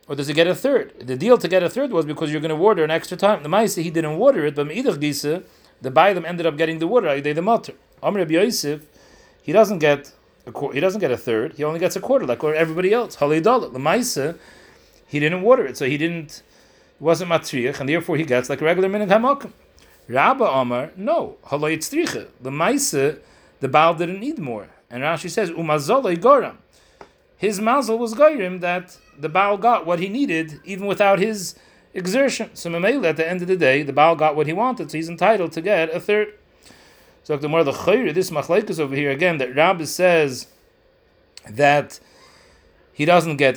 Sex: male